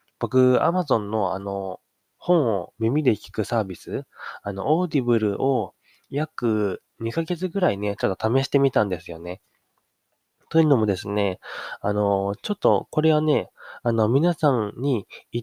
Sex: male